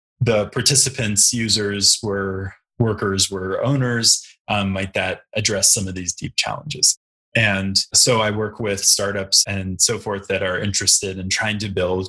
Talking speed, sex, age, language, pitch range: 165 wpm, male, 20-39, English, 100-125 Hz